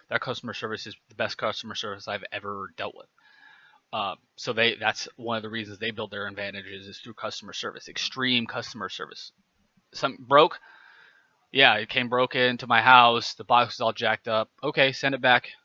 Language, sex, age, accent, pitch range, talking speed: English, male, 20-39, American, 100-125 Hz, 185 wpm